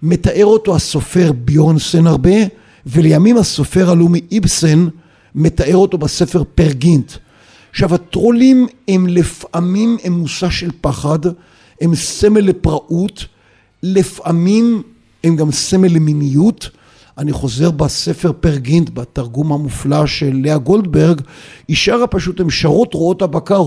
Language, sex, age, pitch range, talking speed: Hebrew, male, 50-69, 145-190 Hz, 110 wpm